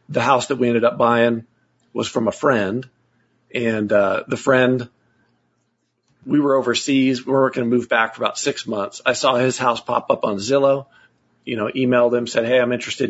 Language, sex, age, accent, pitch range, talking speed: English, male, 40-59, American, 115-130 Hz, 200 wpm